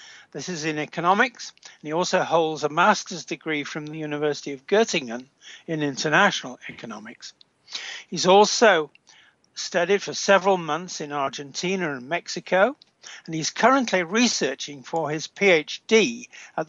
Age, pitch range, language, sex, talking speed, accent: 60-79, 150-200 Hz, English, male, 135 wpm, British